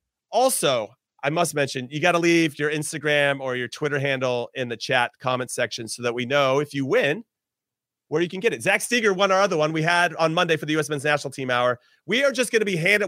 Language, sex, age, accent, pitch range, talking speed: English, male, 30-49, American, 145-200 Hz, 250 wpm